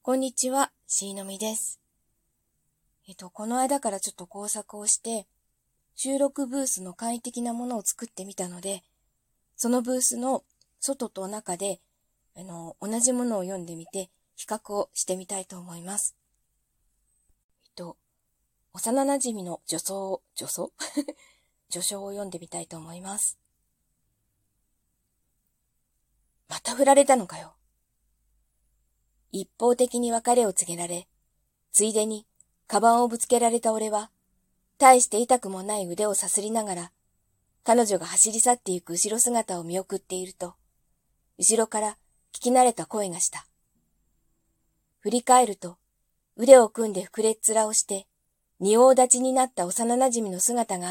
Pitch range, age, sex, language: 175-235 Hz, 20-39, female, Japanese